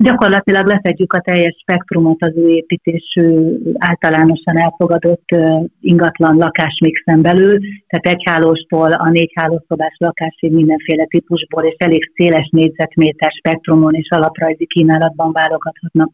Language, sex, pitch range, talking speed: Hungarian, female, 160-175 Hz, 110 wpm